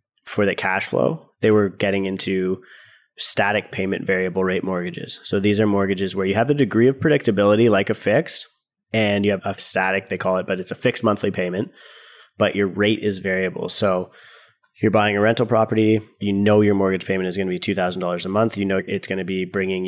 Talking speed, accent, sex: 215 wpm, American, male